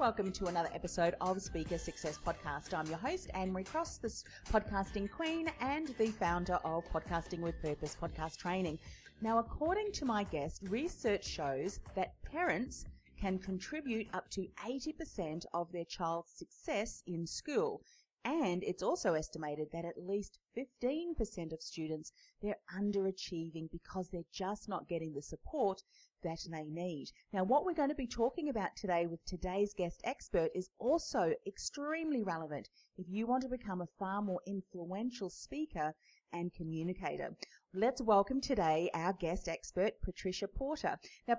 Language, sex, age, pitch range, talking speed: English, female, 40-59, 170-220 Hz, 150 wpm